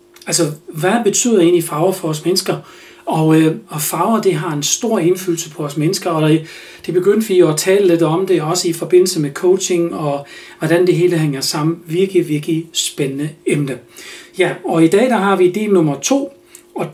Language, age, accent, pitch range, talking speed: Danish, 40-59, native, 165-200 Hz, 200 wpm